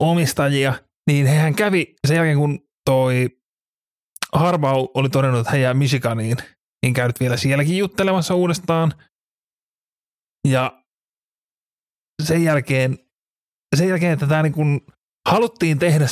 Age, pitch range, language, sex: 30-49, 125-155 Hz, Finnish, male